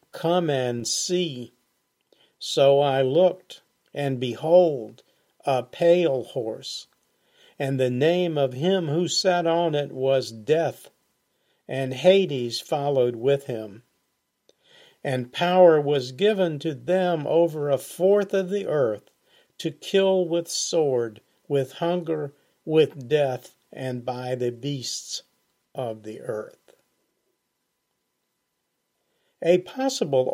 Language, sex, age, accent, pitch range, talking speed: English, male, 50-69, American, 125-170 Hz, 110 wpm